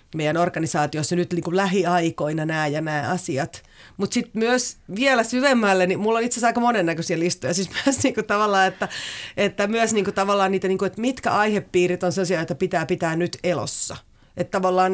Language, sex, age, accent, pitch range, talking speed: Finnish, female, 30-49, native, 175-215 Hz, 150 wpm